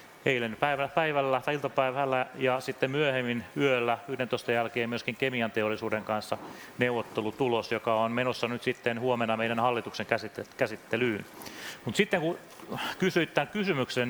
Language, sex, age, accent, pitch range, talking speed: Finnish, male, 30-49, native, 115-135 Hz, 130 wpm